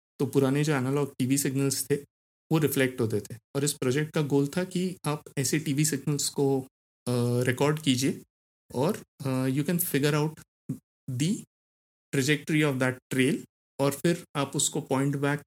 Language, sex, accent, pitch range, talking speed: Hindi, male, native, 125-145 Hz, 160 wpm